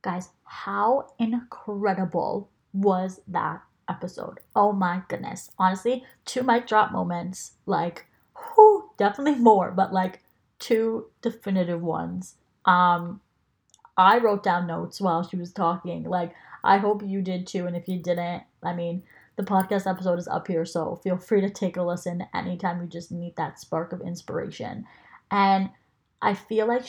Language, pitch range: English, 175-210 Hz